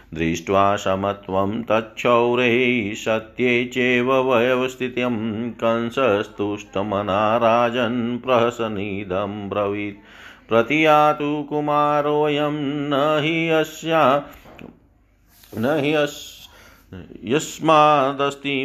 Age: 50-69